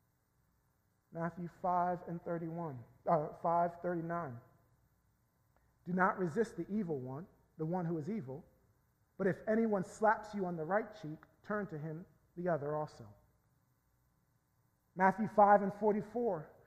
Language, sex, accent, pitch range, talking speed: English, male, American, 160-215 Hz, 135 wpm